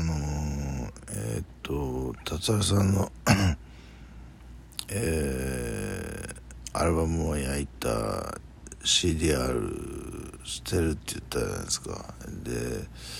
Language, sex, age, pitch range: Japanese, male, 60-79, 65-95 Hz